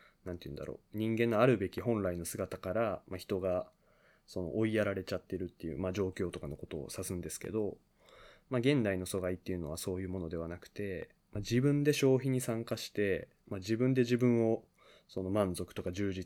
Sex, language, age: male, Japanese, 20-39